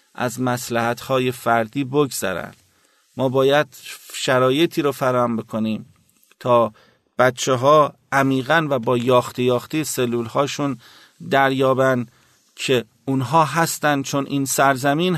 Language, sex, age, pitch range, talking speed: Persian, male, 50-69, 125-145 Hz, 100 wpm